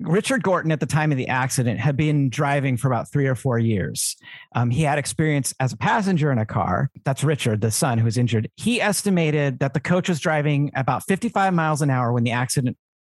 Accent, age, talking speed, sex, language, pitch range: American, 50-69, 225 wpm, male, English, 125-180 Hz